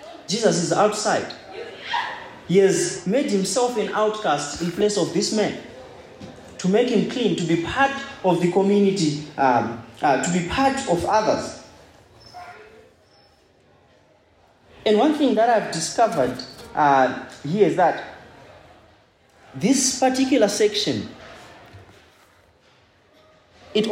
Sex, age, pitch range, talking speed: male, 30-49, 160-215 Hz, 115 wpm